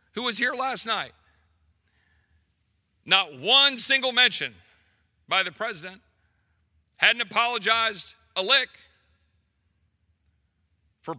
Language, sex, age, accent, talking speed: English, male, 50-69, American, 90 wpm